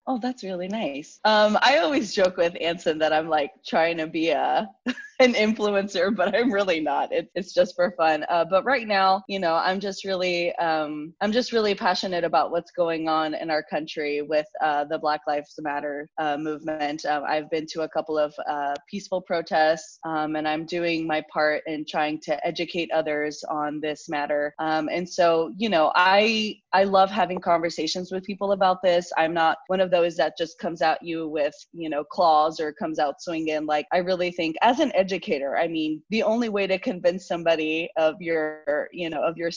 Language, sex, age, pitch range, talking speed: English, female, 20-39, 155-190 Hz, 205 wpm